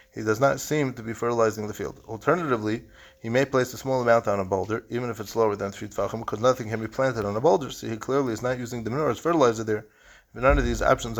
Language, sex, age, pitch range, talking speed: English, male, 30-49, 110-130 Hz, 265 wpm